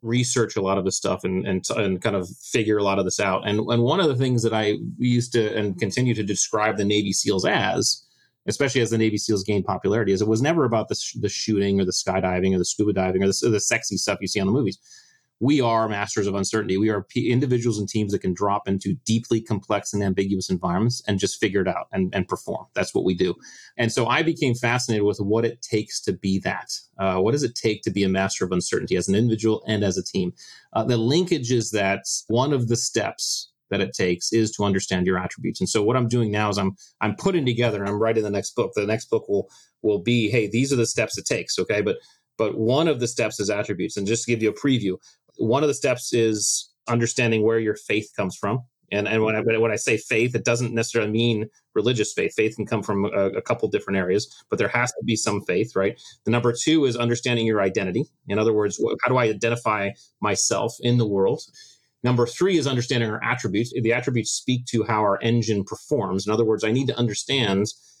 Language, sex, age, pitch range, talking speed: English, male, 30-49, 100-120 Hz, 245 wpm